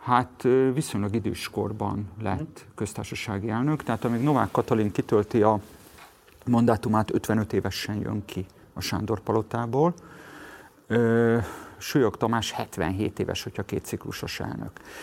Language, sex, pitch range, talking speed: Hungarian, male, 105-125 Hz, 110 wpm